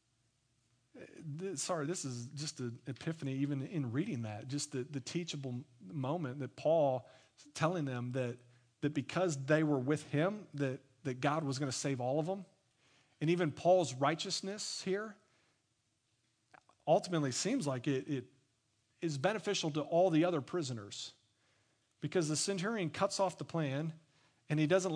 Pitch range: 130-185 Hz